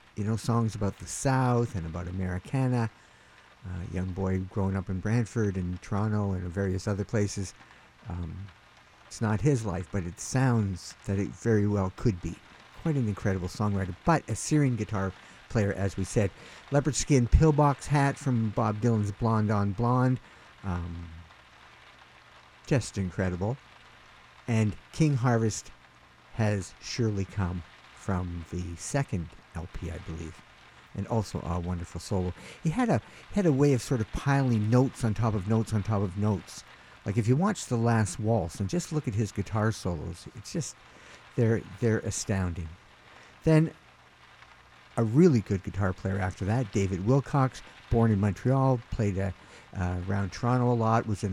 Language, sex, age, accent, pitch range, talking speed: English, male, 50-69, American, 95-115 Hz, 160 wpm